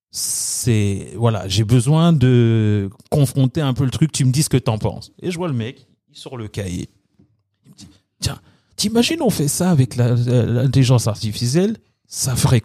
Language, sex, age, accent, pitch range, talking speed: French, male, 40-59, French, 110-145 Hz, 200 wpm